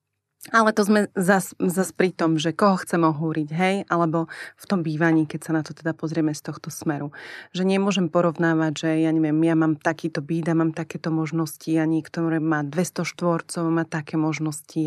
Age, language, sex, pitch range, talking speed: 30-49, Czech, female, 150-170 Hz, 185 wpm